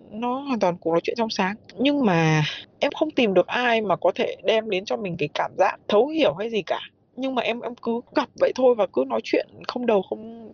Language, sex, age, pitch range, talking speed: Vietnamese, female, 20-39, 180-250 Hz, 255 wpm